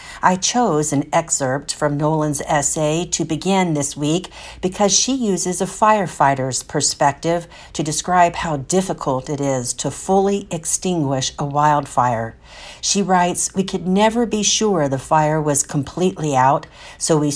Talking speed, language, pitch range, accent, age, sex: 145 wpm, English, 145-185 Hz, American, 50-69, female